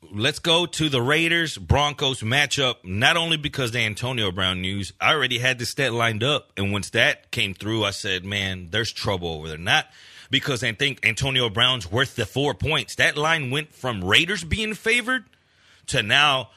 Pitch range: 115-170 Hz